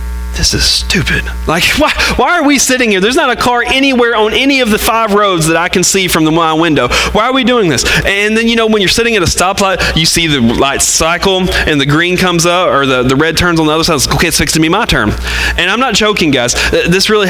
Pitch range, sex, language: 135-215 Hz, male, English